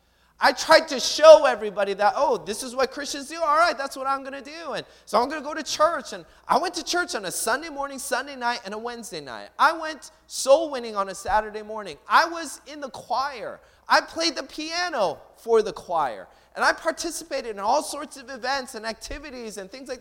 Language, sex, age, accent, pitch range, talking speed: English, male, 30-49, American, 200-315 Hz, 230 wpm